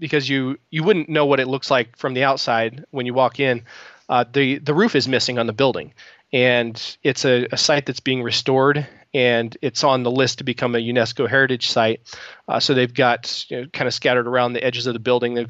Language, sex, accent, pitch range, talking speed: English, male, American, 120-140 Hz, 225 wpm